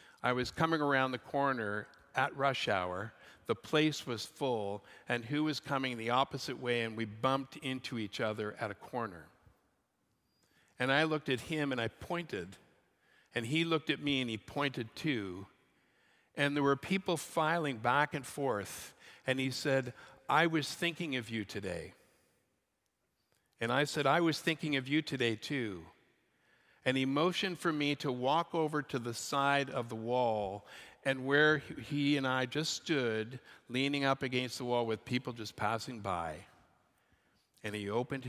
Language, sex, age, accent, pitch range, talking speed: English, male, 60-79, American, 110-145 Hz, 170 wpm